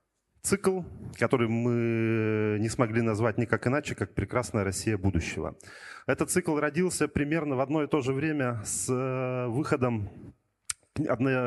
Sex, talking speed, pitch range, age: male, 130 wpm, 110-135 Hz, 30-49